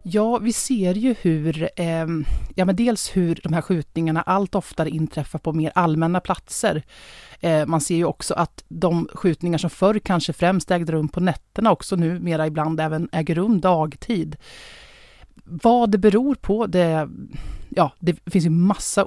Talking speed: 170 wpm